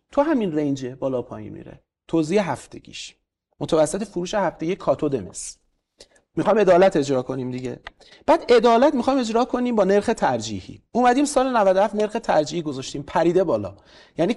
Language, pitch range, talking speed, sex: Persian, 150-240 Hz, 140 wpm, male